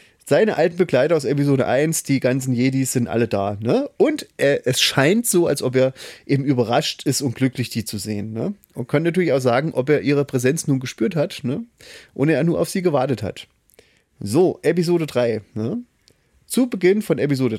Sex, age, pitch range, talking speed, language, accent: male, 30-49, 120-180 Hz, 200 wpm, German, German